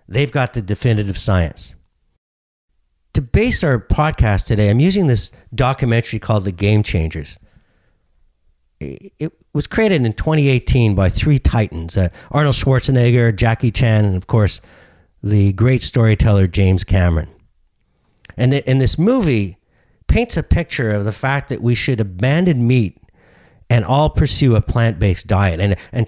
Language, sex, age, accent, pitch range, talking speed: English, male, 50-69, American, 95-125 Hz, 145 wpm